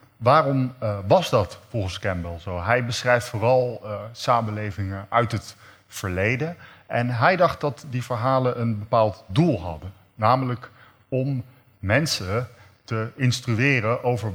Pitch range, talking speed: 100-120 Hz, 130 wpm